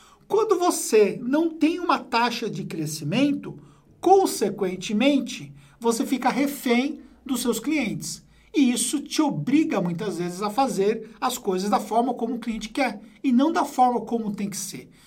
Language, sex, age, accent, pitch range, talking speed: Portuguese, male, 50-69, Brazilian, 200-275 Hz, 155 wpm